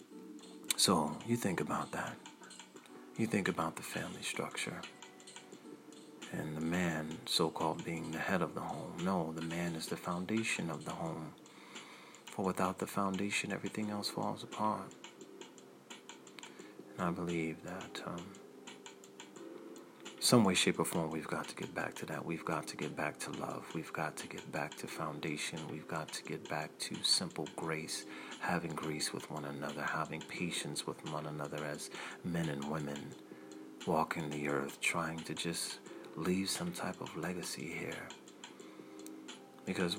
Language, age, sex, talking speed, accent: English, 40-59, male, 155 wpm, American